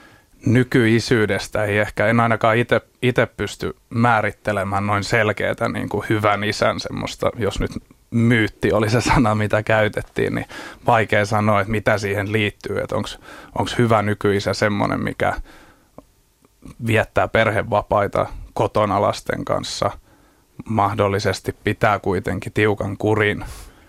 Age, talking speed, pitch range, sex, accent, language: 30-49, 110 wpm, 105-115 Hz, male, native, Finnish